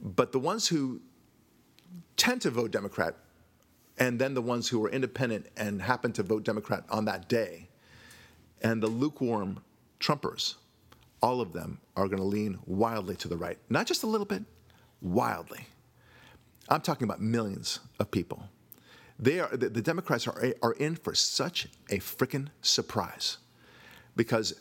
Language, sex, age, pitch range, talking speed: English, male, 50-69, 110-150 Hz, 155 wpm